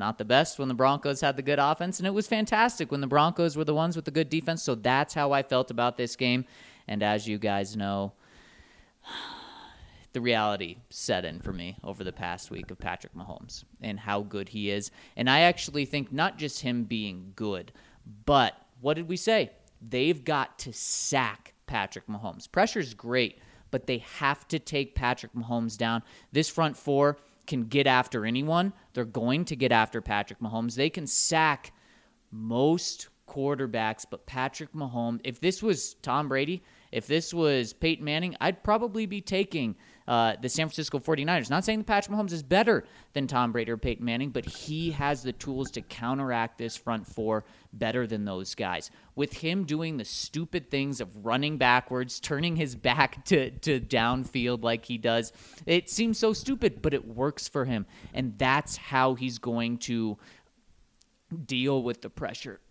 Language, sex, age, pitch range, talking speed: English, male, 30-49, 115-155 Hz, 180 wpm